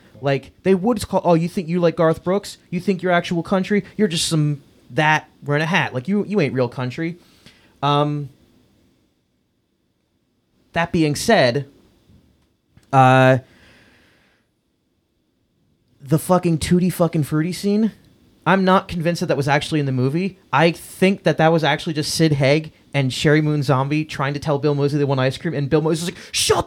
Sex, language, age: male, English, 30-49